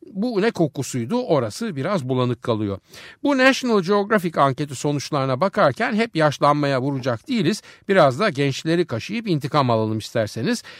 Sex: male